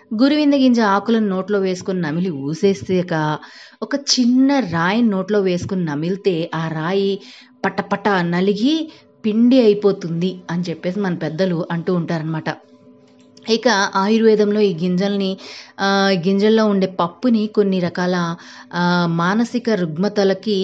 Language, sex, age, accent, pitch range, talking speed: Telugu, female, 30-49, native, 175-215 Hz, 110 wpm